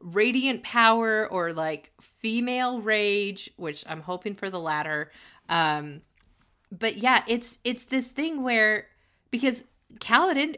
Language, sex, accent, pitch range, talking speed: English, female, American, 160-225 Hz, 125 wpm